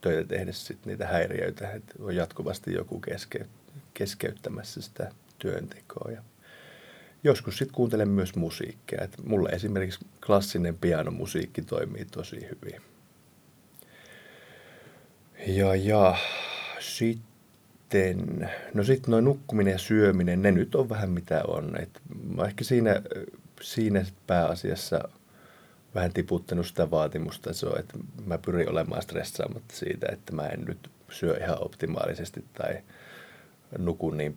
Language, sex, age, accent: Finnish, male, 30-49, native